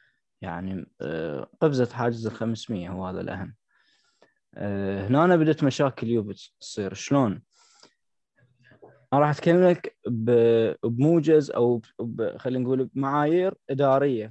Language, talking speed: Arabic, 100 wpm